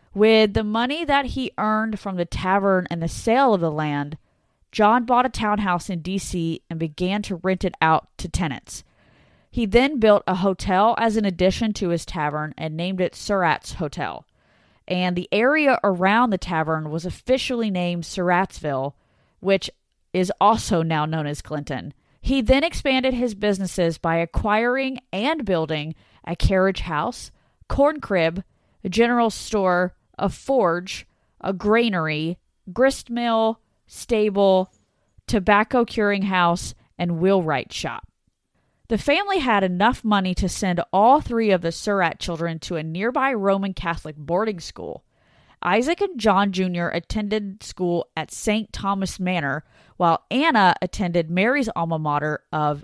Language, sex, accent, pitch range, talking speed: English, female, American, 170-225 Hz, 145 wpm